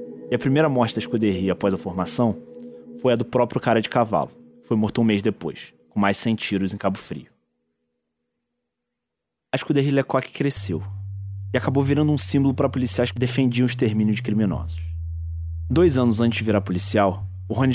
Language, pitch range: Portuguese, 95-125 Hz